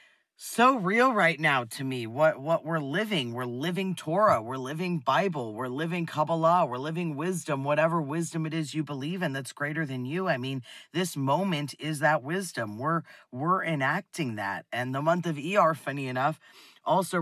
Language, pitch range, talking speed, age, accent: English, 120-165 Hz, 180 wpm, 30-49, American